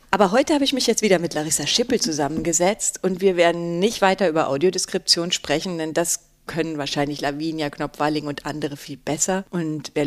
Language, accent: German, German